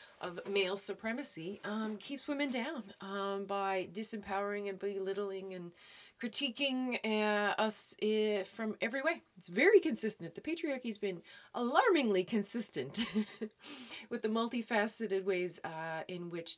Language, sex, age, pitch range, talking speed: English, female, 30-49, 165-210 Hz, 130 wpm